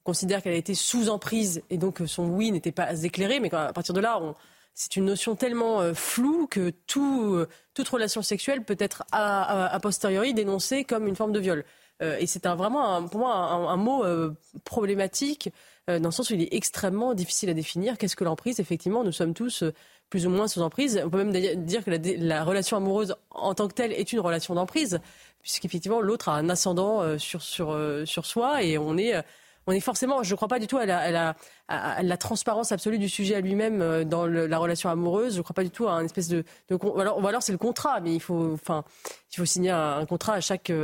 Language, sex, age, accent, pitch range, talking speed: French, female, 30-49, French, 170-215 Hz, 245 wpm